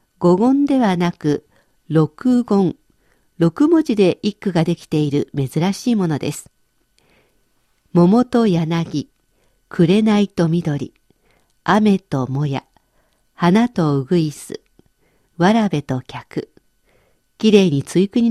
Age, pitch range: 50-69, 160-225 Hz